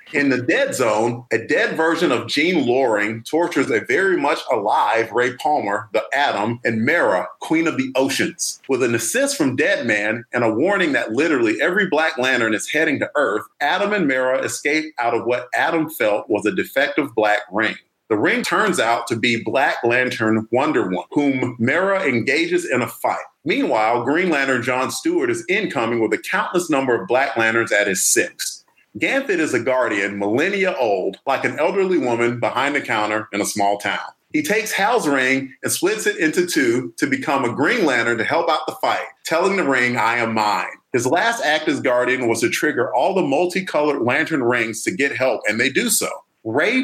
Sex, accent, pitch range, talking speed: male, American, 115-195 Hz, 195 wpm